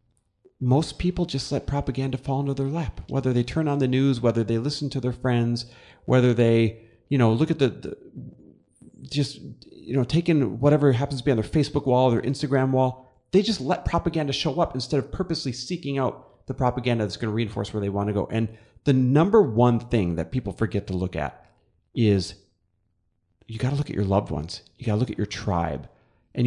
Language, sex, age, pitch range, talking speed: English, male, 30-49, 100-130 Hz, 215 wpm